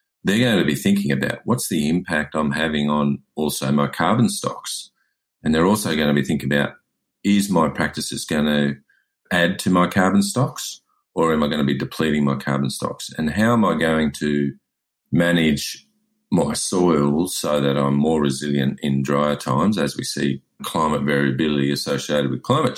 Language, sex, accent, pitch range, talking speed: English, male, Australian, 70-80 Hz, 180 wpm